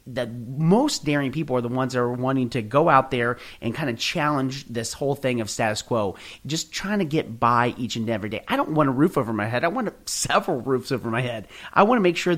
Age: 30-49